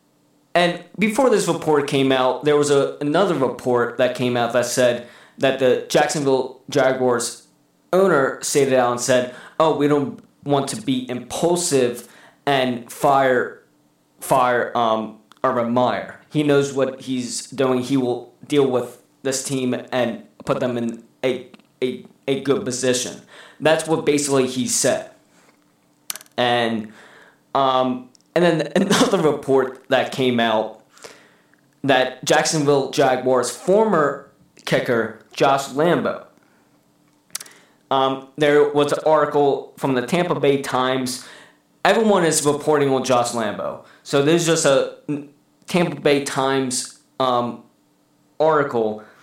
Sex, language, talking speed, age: male, English, 125 wpm, 20-39